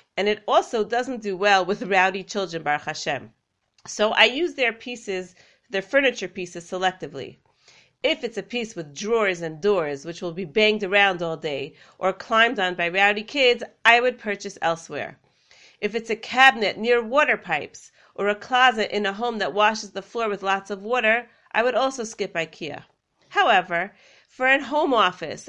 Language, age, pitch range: English, 40-59, 185-240 Hz